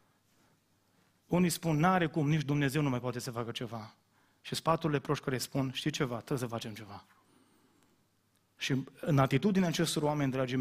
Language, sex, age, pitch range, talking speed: Romanian, male, 30-49, 135-170 Hz, 165 wpm